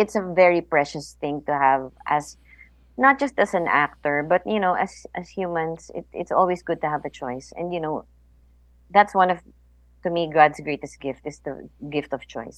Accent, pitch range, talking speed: Filipino, 140-170 Hz, 205 wpm